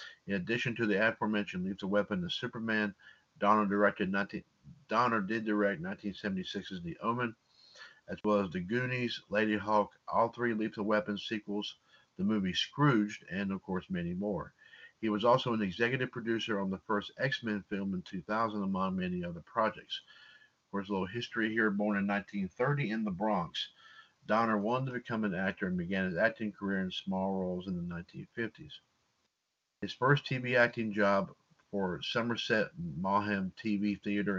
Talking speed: 160 wpm